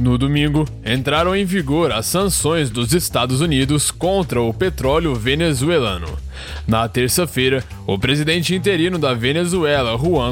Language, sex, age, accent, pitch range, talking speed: Portuguese, male, 20-39, Brazilian, 120-165 Hz, 130 wpm